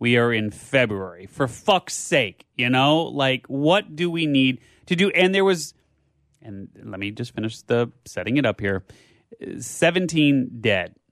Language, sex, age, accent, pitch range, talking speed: English, male, 30-49, American, 110-145 Hz, 165 wpm